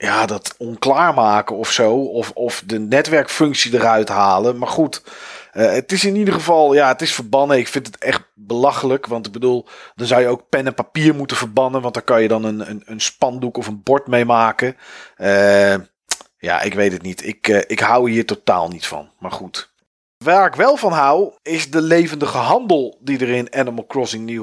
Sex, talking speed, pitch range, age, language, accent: male, 210 wpm, 110-150 Hz, 40-59, Dutch, Dutch